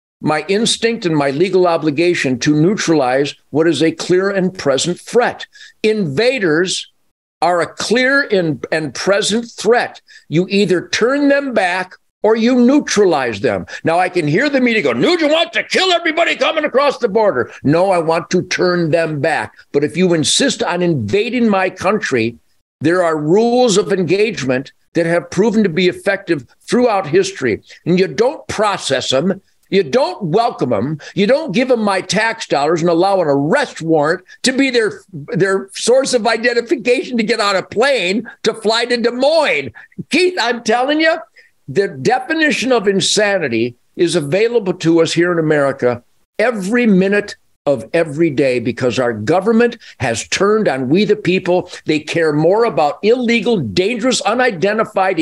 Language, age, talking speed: English, 50-69, 165 wpm